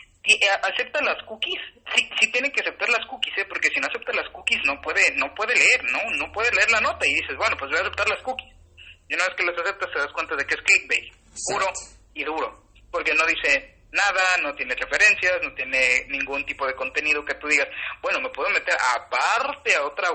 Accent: Mexican